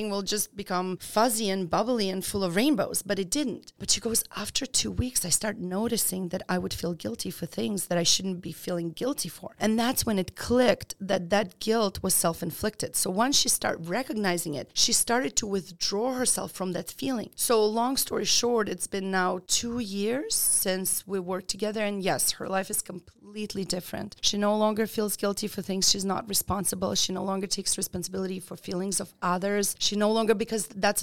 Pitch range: 185-215 Hz